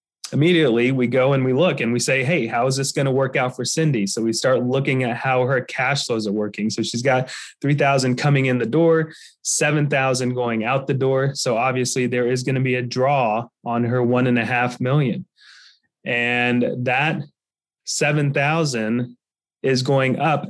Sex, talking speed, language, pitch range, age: male, 190 wpm, English, 120-140 Hz, 20-39